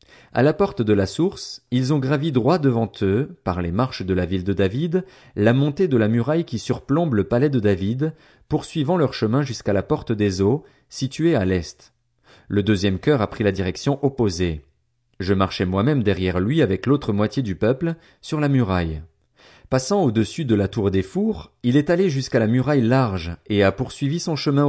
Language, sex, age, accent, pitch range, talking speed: French, male, 40-59, French, 100-140 Hz, 200 wpm